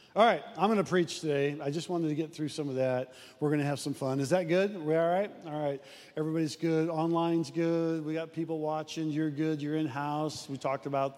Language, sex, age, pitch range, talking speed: English, male, 40-59, 150-195 Hz, 240 wpm